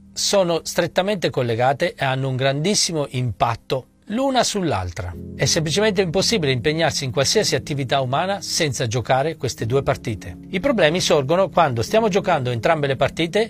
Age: 40-59